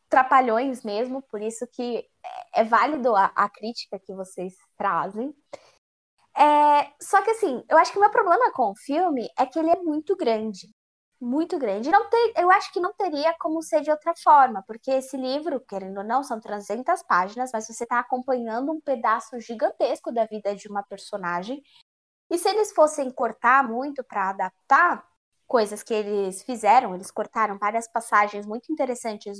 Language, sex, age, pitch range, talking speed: Portuguese, female, 10-29, 215-300 Hz, 175 wpm